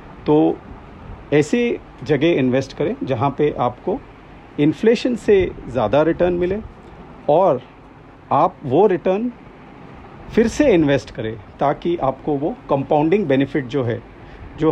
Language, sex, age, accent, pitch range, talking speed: Hindi, male, 50-69, native, 120-150 Hz, 120 wpm